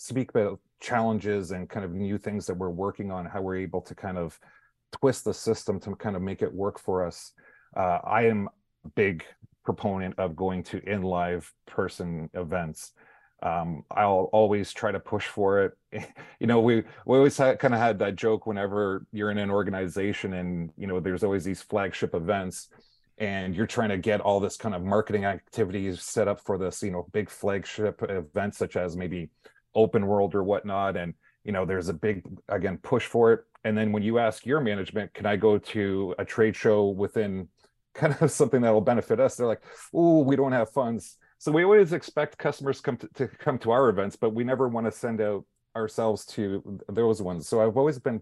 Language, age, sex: English, 30-49, male